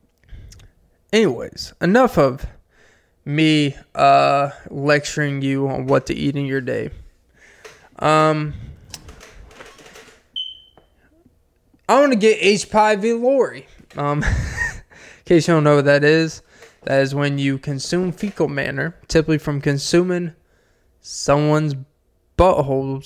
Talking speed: 110 wpm